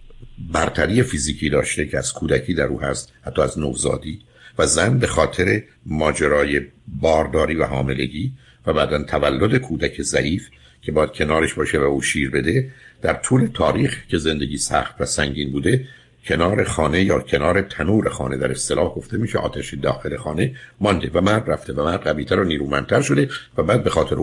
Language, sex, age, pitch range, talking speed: Persian, male, 60-79, 75-120 Hz, 170 wpm